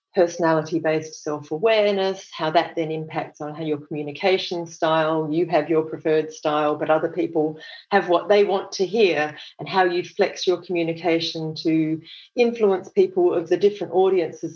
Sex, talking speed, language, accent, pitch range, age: female, 155 wpm, English, Australian, 155-200 Hz, 40-59